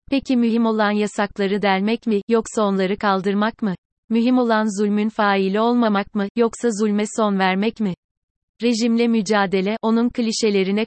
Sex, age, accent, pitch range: female, 30-49, native, 200-230 Hz